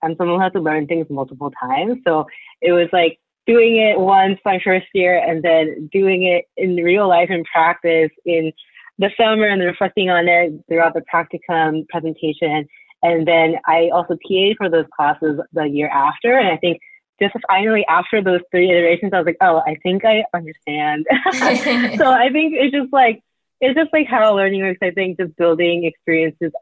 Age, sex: 20-39, female